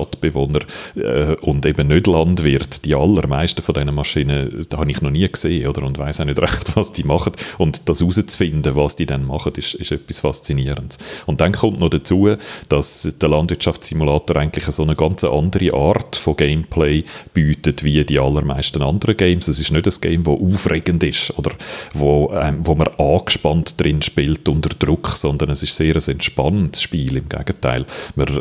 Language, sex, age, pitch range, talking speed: German, male, 40-59, 70-80 Hz, 190 wpm